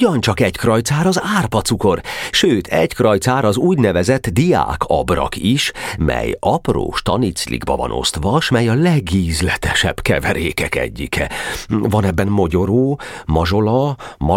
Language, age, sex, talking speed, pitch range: Hungarian, 40-59, male, 110 wpm, 90-120 Hz